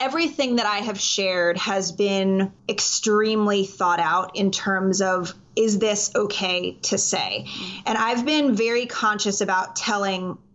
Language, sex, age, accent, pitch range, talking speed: English, female, 20-39, American, 185-215 Hz, 140 wpm